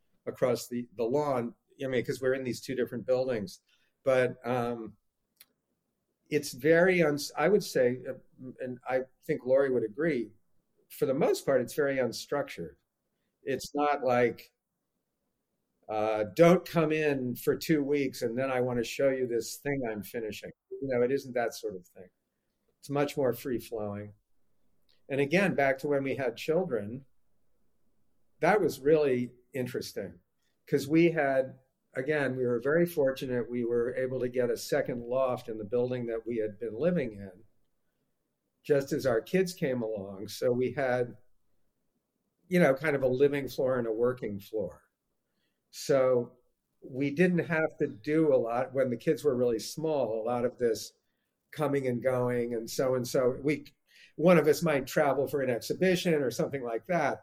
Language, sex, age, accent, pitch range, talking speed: English, male, 50-69, American, 120-145 Hz, 170 wpm